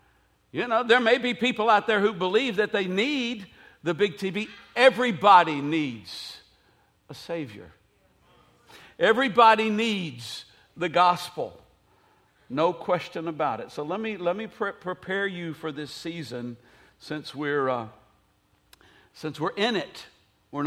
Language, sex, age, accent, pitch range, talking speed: English, male, 60-79, American, 140-200 Hz, 135 wpm